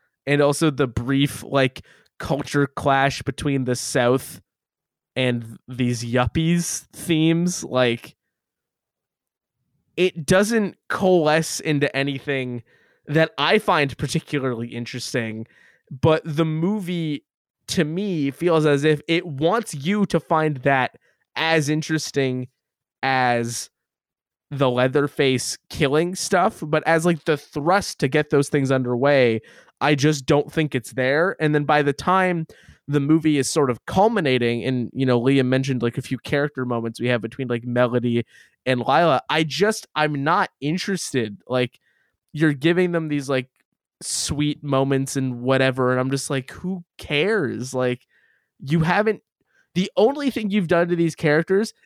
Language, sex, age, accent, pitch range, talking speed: English, male, 20-39, American, 130-165 Hz, 140 wpm